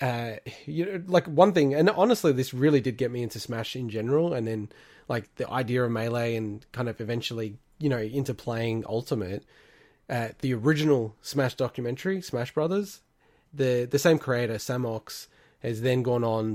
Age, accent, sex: 20-39, Australian, male